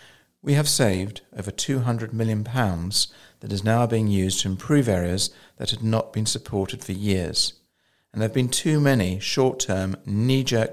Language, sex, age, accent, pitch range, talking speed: English, male, 50-69, British, 95-125 Hz, 160 wpm